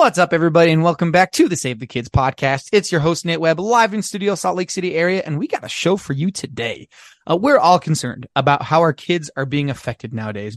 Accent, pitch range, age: American, 135-185 Hz, 20-39